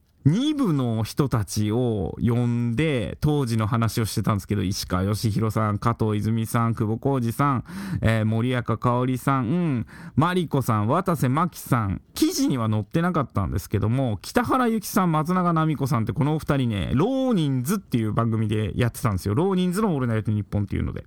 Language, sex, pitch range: Japanese, male, 115-180 Hz